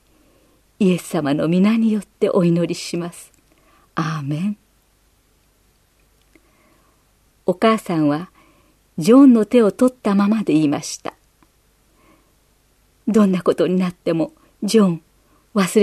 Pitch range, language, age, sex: 160-220 Hz, Japanese, 50-69, female